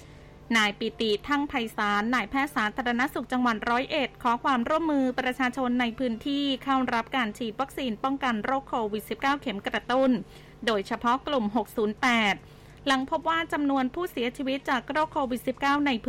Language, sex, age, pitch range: Thai, female, 20-39, 220-270 Hz